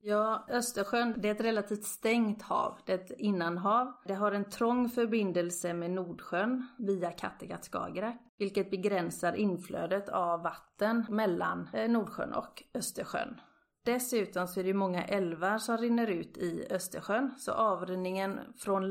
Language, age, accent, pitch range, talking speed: Swedish, 30-49, native, 185-225 Hz, 140 wpm